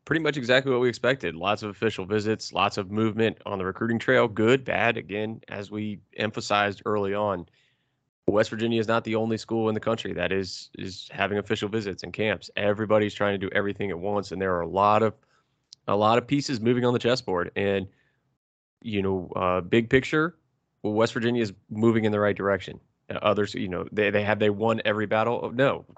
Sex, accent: male, American